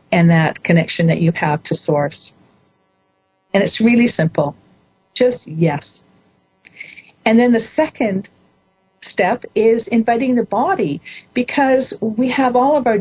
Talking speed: 135 wpm